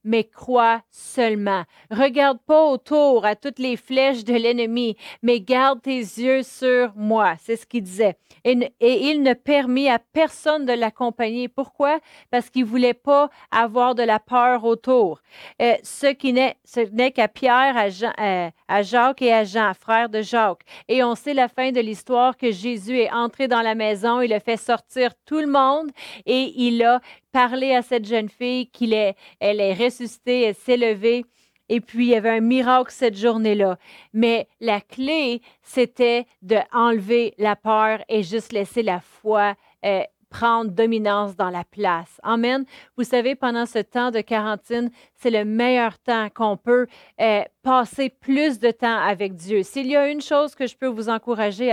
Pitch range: 220-255 Hz